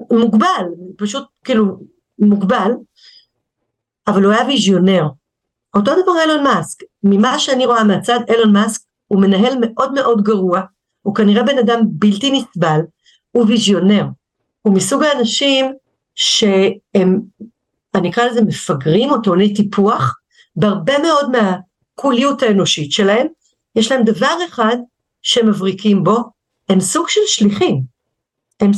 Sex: female